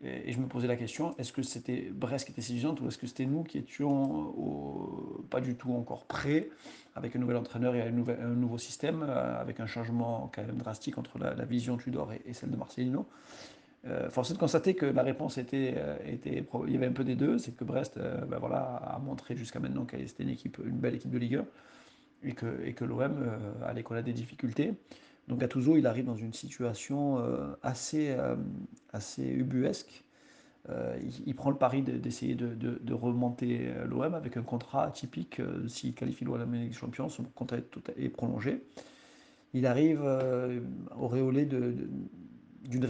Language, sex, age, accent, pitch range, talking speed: French, male, 40-59, French, 120-135 Hz, 195 wpm